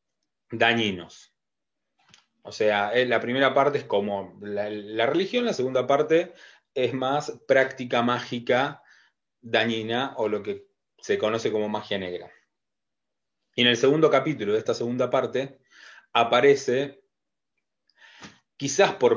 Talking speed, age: 125 wpm, 30-49